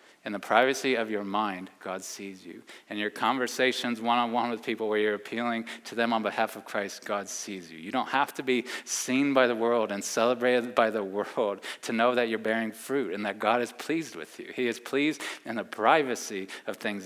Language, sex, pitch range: English, male, 105-130 Hz